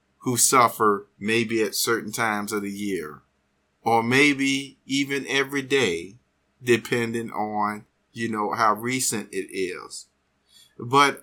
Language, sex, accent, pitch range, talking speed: English, male, American, 95-145 Hz, 125 wpm